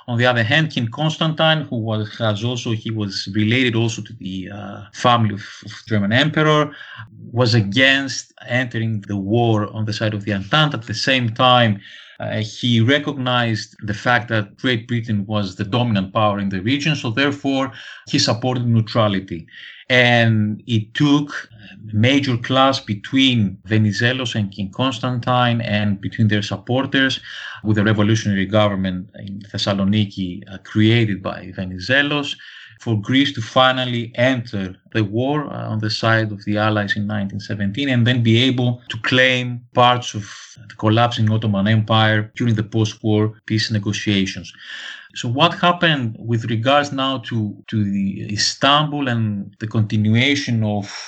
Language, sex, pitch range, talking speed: English, male, 105-125 Hz, 150 wpm